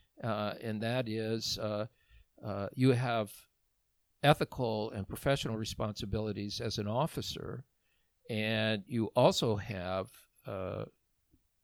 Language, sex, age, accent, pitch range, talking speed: English, male, 50-69, American, 100-120 Hz, 105 wpm